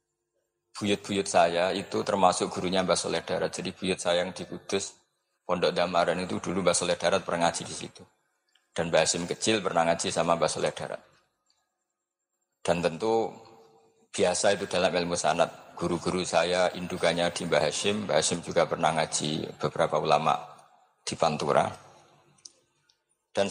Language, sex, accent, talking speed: Indonesian, male, native, 150 wpm